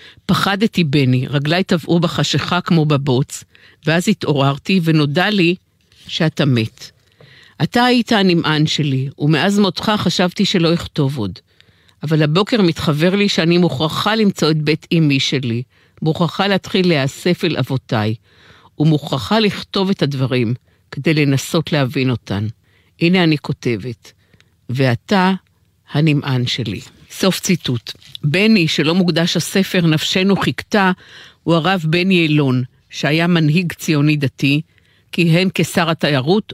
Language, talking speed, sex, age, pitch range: Hebrew, 120 wpm, female, 50-69, 135-180 Hz